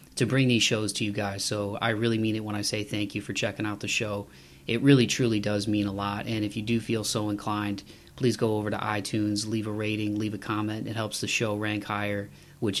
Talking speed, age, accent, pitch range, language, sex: 255 wpm, 20-39, American, 105-125 Hz, English, male